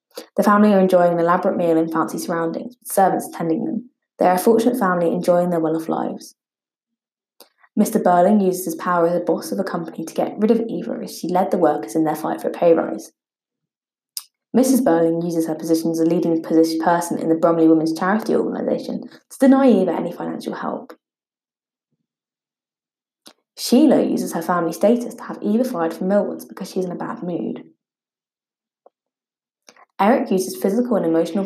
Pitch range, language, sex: 170-225 Hz, English, female